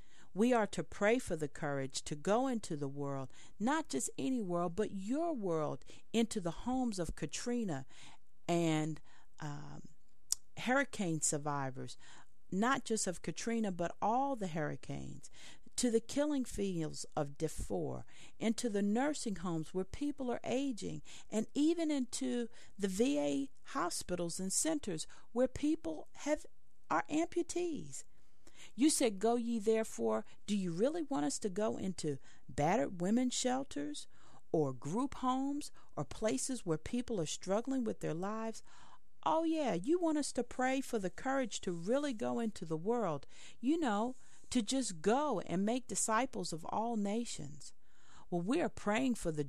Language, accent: English, American